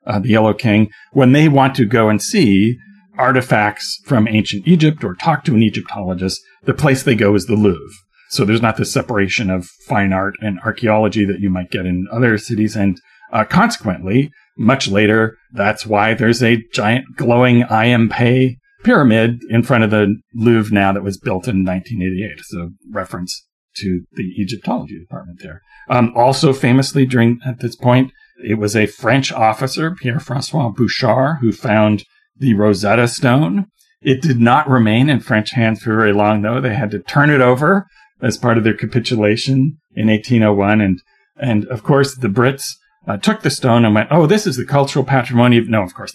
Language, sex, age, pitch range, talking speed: English, male, 40-59, 105-135 Hz, 180 wpm